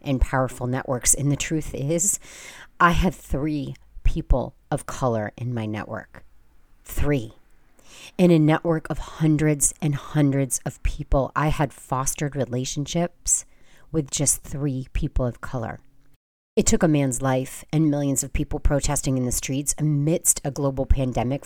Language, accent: English, American